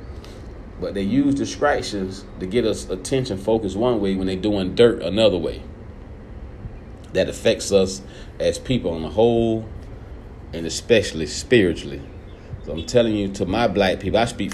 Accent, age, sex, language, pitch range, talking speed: American, 40-59, male, English, 85-105 Hz, 155 wpm